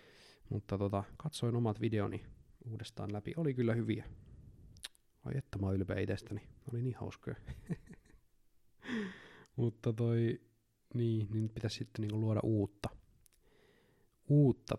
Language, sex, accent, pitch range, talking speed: Finnish, male, native, 105-125 Hz, 115 wpm